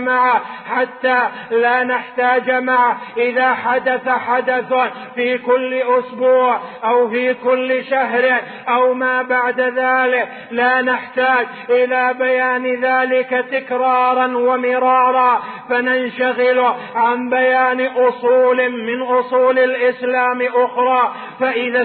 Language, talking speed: Arabic, 95 wpm